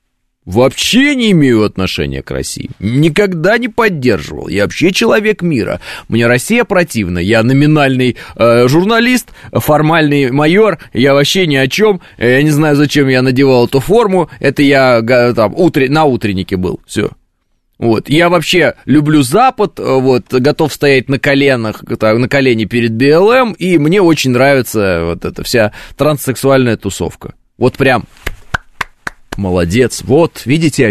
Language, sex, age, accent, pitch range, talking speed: Russian, male, 20-39, native, 105-150 Hz, 140 wpm